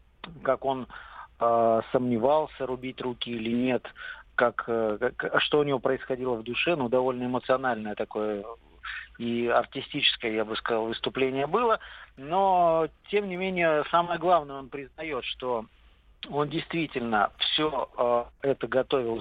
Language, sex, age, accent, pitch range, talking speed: Russian, male, 50-69, native, 115-140 Hz, 125 wpm